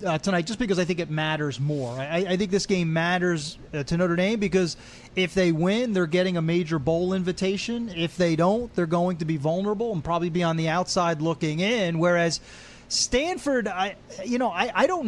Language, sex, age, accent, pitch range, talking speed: English, male, 30-49, American, 165-210 Hz, 210 wpm